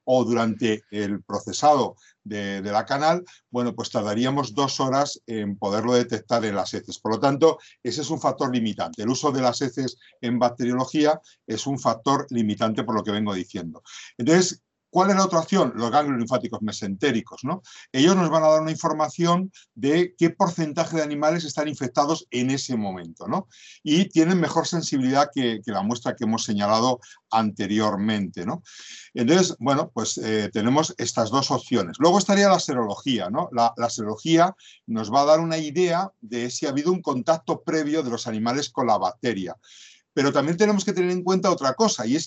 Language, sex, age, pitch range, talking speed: Spanish, male, 50-69, 115-165 Hz, 180 wpm